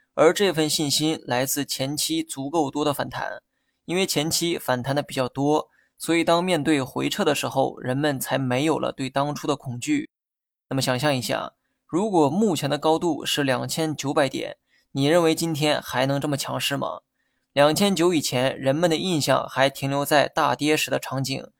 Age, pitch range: 20-39, 135-160 Hz